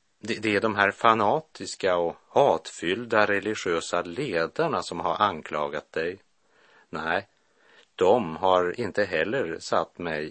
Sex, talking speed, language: male, 115 wpm, Swedish